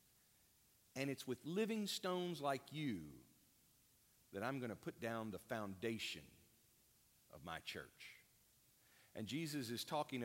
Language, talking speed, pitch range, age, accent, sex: English, 130 wpm, 120-160 Hz, 50-69, American, male